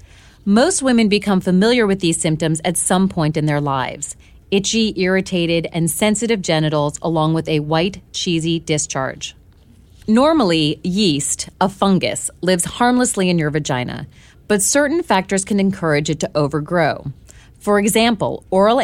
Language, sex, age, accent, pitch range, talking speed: English, female, 30-49, American, 155-200 Hz, 140 wpm